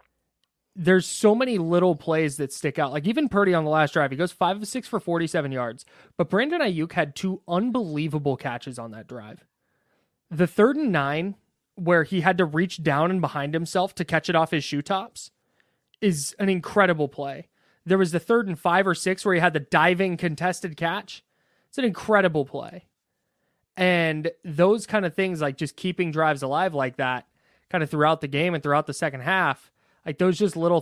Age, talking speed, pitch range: 20-39, 200 wpm, 145-180 Hz